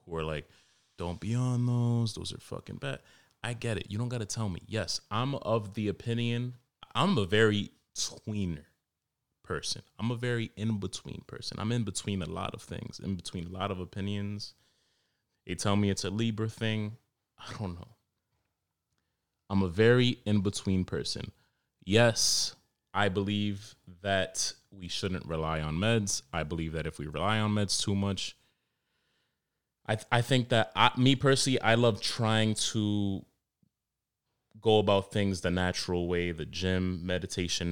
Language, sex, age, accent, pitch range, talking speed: English, male, 30-49, American, 90-115 Hz, 160 wpm